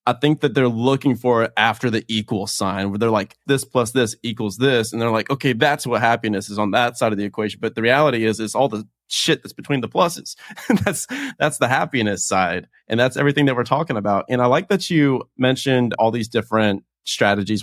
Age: 20-39